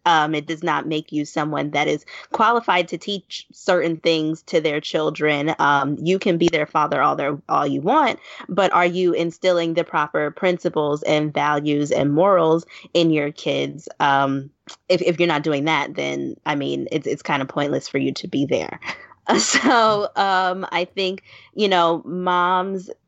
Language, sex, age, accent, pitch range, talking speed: English, female, 20-39, American, 155-185 Hz, 180 wpm